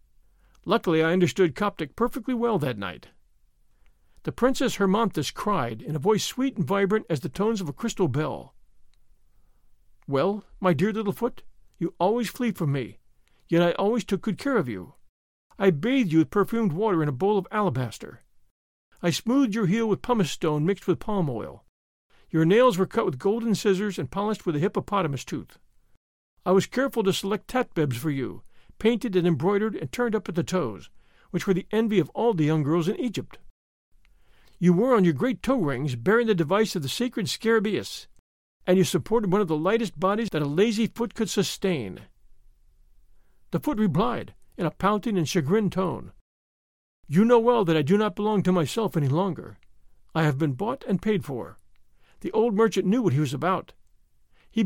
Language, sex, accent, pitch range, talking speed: English, male, American, 160-220 Hz, 185 wpm